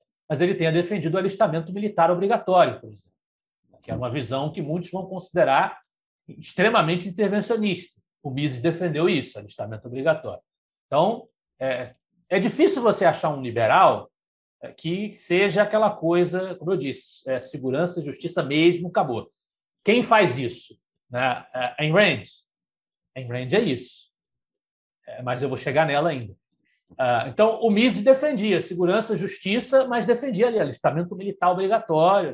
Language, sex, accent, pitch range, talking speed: Portuguese, male, Brazilian, 150-215 Hz, 135 wpm